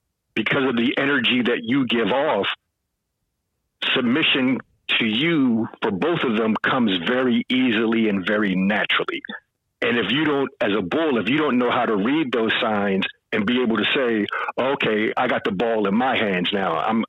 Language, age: English, 50-69